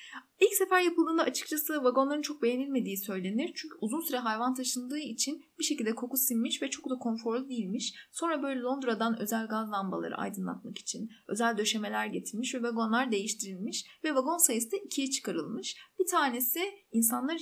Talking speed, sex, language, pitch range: 160 wpm, female, Turkish, 230-290 Hz